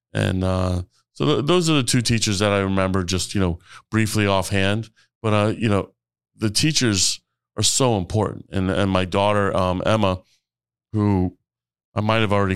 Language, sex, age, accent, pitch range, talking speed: English, male, 20-39, American, 90-110 Hz, 175 wpm